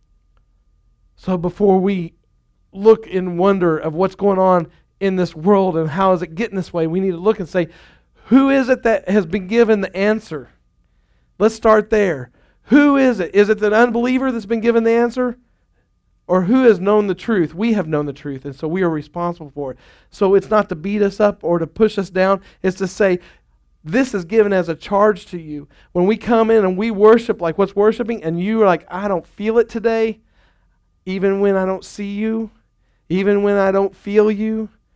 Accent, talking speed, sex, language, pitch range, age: American, 210 wpm, male, English, 140-205 Hz, 40-59